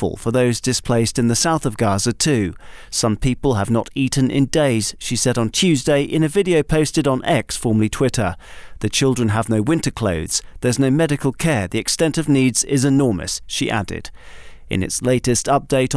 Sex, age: male, 40-59